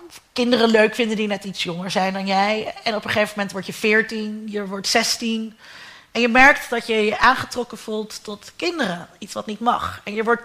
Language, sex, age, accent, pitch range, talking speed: Dutch, female, 30-49, Dutch, 205-255 Hz, 220 wpm